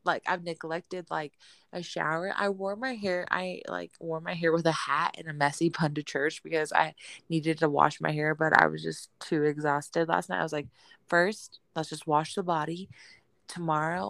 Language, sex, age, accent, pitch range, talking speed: English, female, 20-39, American, 150-180 Hz, 210 wpm